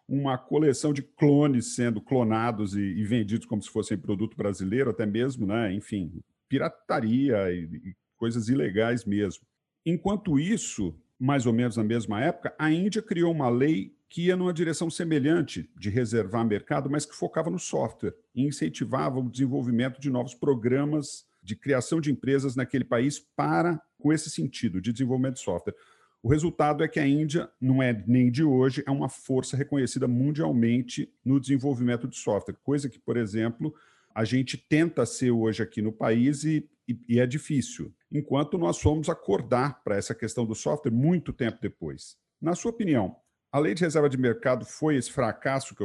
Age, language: 50-69, Portuguese